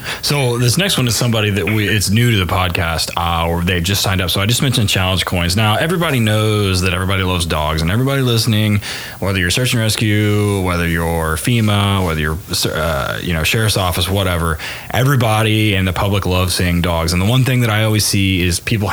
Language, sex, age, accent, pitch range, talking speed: English, male, 20-39, American, 85-110 Hz, 215 wpm